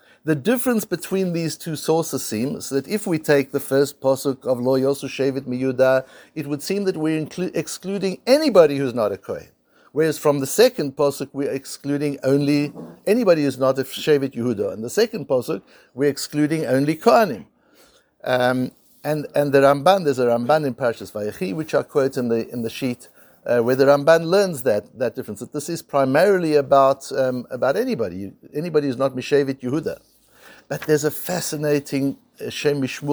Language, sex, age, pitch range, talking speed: English, male, 60-79, 130-155 Hz, 180 wpm